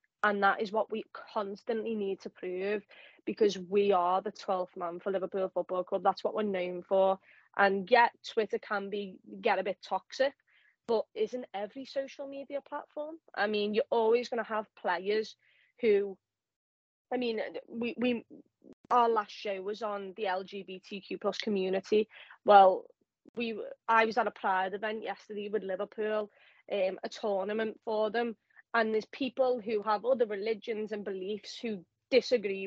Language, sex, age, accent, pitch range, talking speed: English, female, 20-39, British, 200-225 Hz, 160 wpm